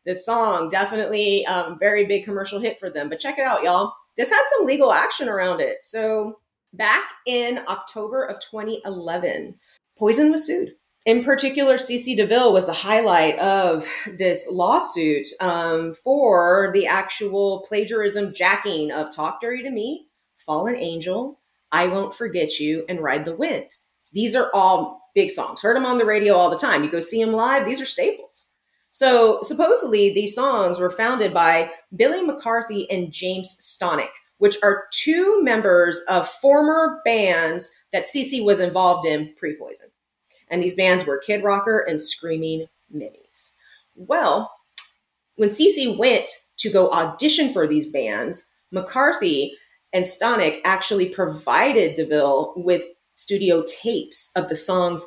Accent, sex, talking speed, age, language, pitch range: American, female, 150 wpm, 30-49, English, 175-245 Hz